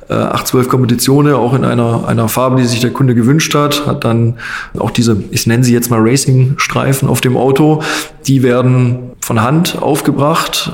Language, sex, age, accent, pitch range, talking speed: German, male, 20-39, German, 125-145 Hz, 175 wpm